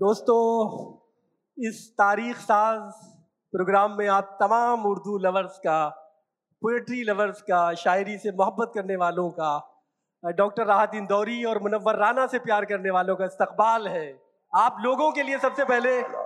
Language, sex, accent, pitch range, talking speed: Hindi, male, native, 200-265 Hz, 145 wpm